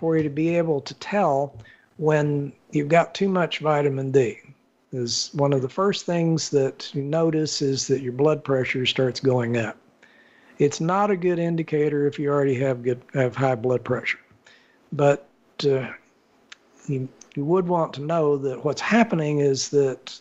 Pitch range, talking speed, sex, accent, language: 130-165 Hz, 170 wpm, male, American, English